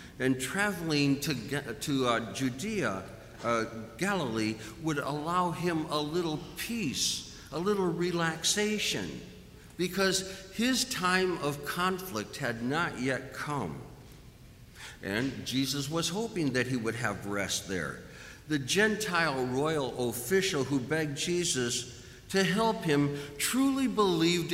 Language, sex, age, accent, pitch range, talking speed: English, male, 60-79, American, 125-185 Hz, 115 wpm